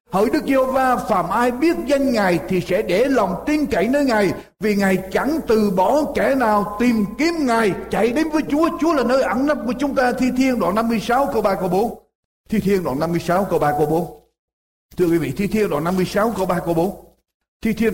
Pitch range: 190-260 Hz